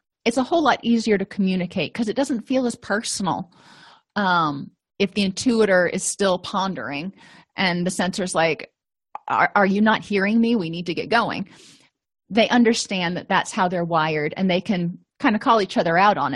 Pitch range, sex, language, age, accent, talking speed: 180-230 Hz, female, English, 30-49, American, 190 wpm